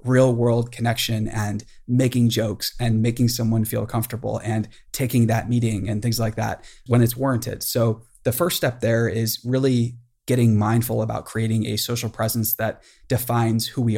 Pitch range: 110-125 Hz